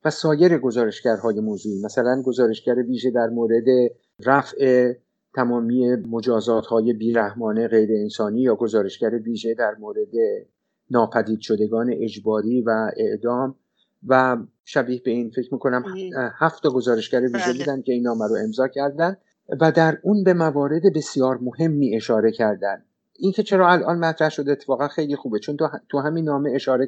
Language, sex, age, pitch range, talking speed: English, male, 50-69, 120-155 Hz, 155 wpm